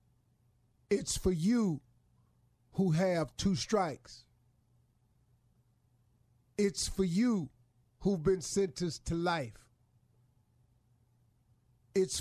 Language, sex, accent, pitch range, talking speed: English, male, American, 120-185 Hz, 80 wpm